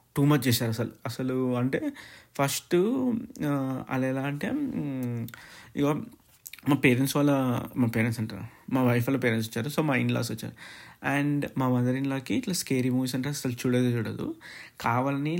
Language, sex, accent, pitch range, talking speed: Telugu, male, native, 125-150 Hz, 135 wpm